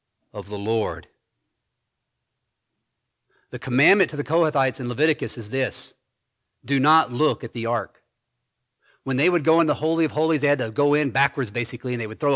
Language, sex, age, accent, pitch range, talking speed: English, male, 40-59, American, 120-155 Hz, 185 wpm